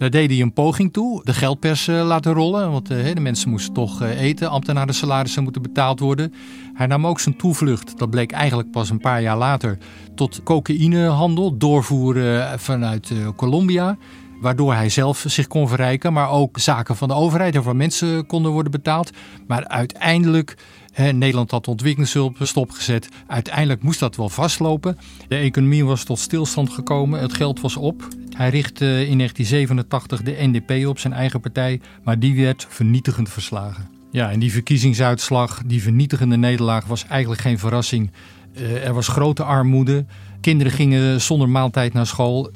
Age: 50-69